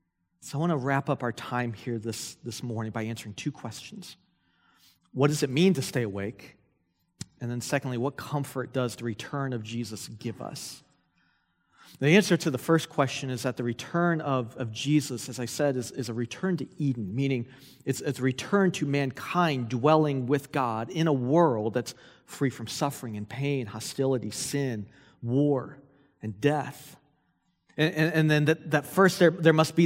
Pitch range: 130-165 Hz